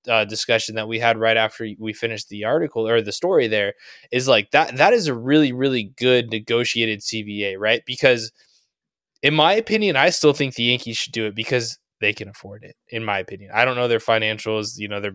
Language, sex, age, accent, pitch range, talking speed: English, male, 20-39, American, 110-145 Hz, 220 wpm